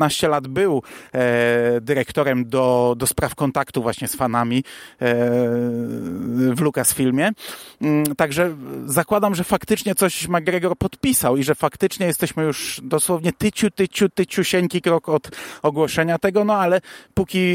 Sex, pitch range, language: male, 130-180 Hz, Polish